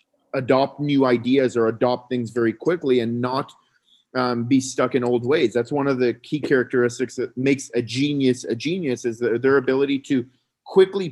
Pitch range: 125-150 Hz